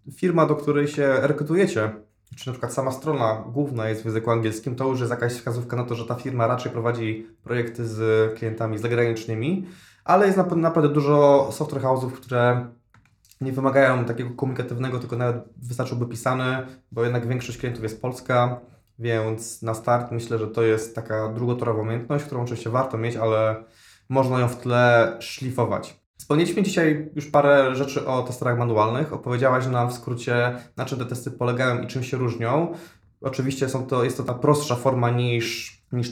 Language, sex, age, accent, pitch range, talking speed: Polish, male, 20-39, native, 120-145 Hz, 170 wpm